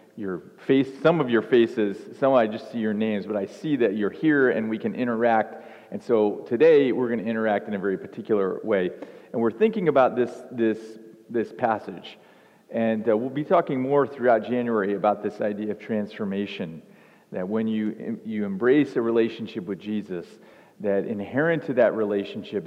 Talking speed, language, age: 180 wpm, English, 40-59